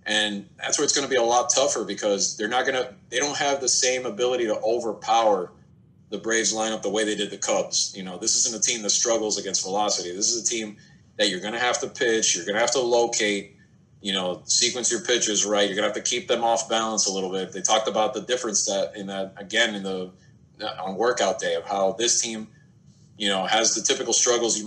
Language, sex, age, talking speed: English, male, 30-49, 250 wpm